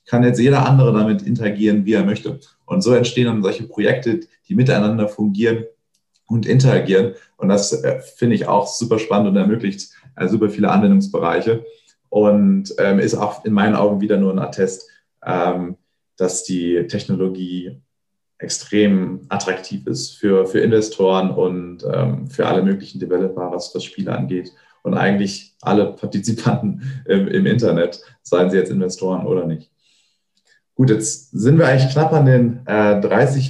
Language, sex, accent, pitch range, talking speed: German, male, German, 95-120 Hz, 160 wpm